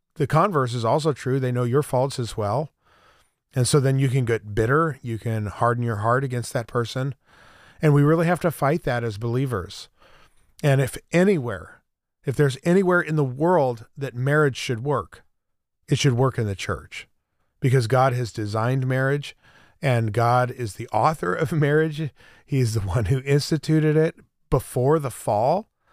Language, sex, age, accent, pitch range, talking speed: English, male, 40-59, American, 120-145 Hz, 175 wpm